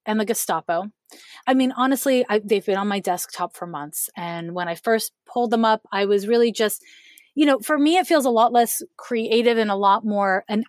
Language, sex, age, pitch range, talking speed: English, female, 30-49, 200-250 Hz, 220 wpm